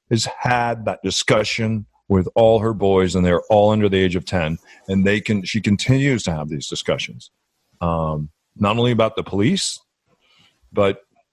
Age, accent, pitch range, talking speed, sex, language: 40-59, American, 95-110 Hz, 170 wpm, male, English